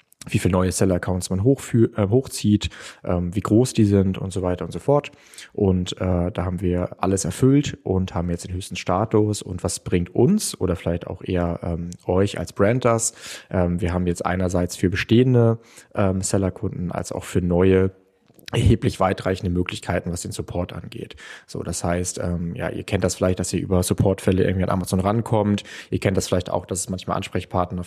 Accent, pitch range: German, 90-105 Hz